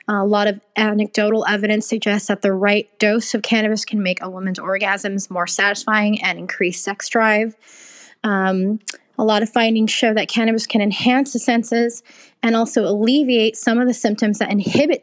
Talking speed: 175 wpm